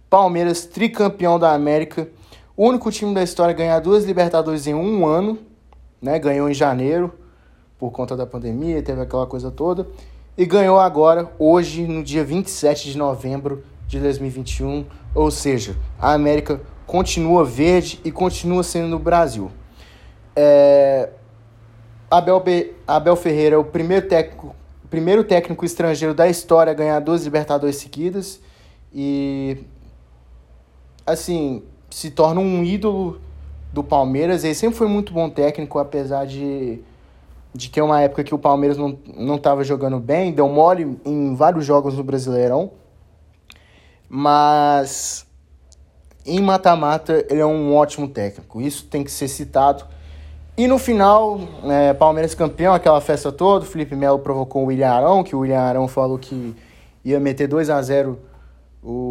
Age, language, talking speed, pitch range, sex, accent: 20-39, Portuguese, 145 wpm, 130-170 Hz, male, Brazilian